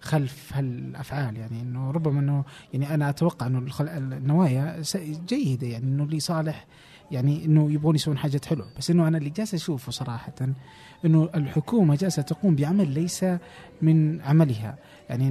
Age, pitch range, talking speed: 30-49, 135-175 Hz, 150 wpm